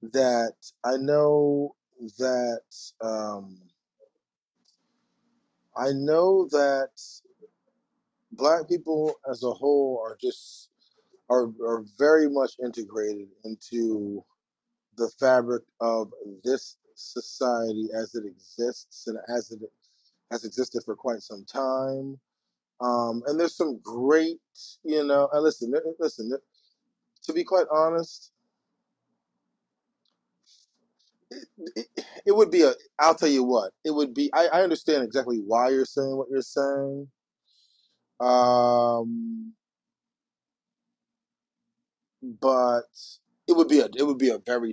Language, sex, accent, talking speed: English, male, American, 115 wpm